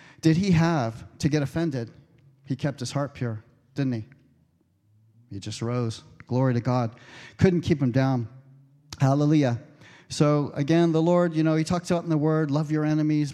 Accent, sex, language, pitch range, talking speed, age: American, male, English, 135-165 Hz, 175 wpm, 40-59